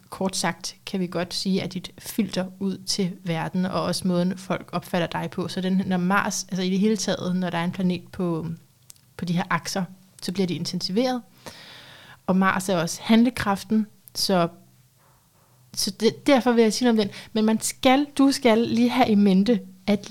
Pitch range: 175-215 Hz